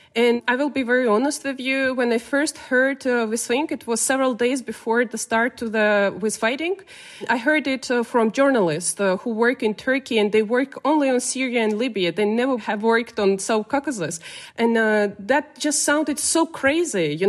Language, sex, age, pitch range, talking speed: English, female, 20-39, 235-280 Hz, 210 wpm